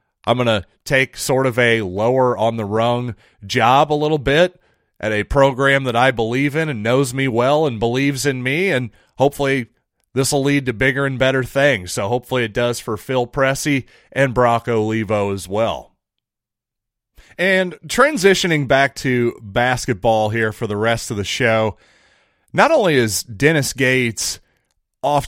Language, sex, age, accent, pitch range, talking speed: English, male, 30-49, American, 115-140 Hz, 165 wpm